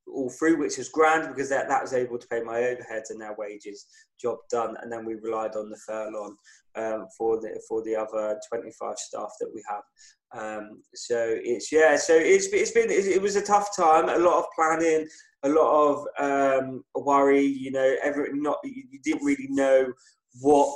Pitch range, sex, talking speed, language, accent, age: 120-160 Hz, male, 195 wpm, English, British, 20-39